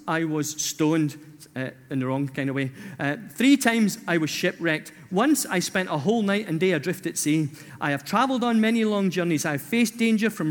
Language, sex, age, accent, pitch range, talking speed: English, male, 40-59, British, 155-210 Hz, 225 wpm